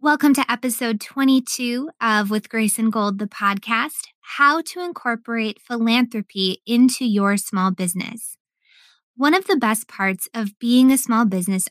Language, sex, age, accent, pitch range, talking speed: English, female, 20-39, American, 210-255 Hz, 150 wpm